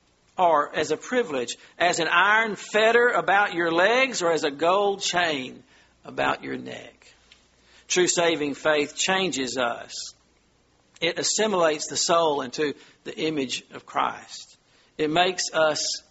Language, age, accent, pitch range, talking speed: English, 50-69, American, 140-175 Hz, 135 wpm